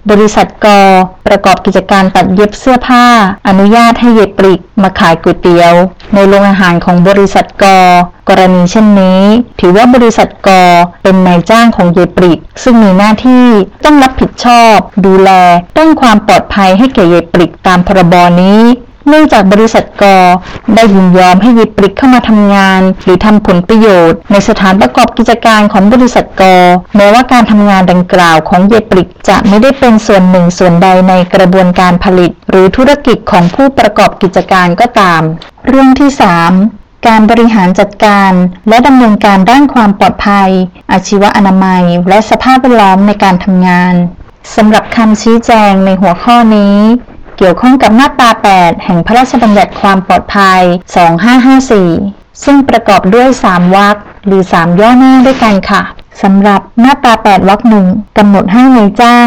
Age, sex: 20-39, female